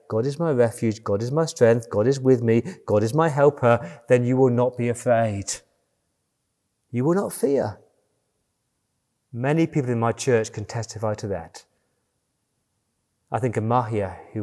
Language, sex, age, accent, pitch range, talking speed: English, male, 30-49, British, 110-135 Hz, 165 wpm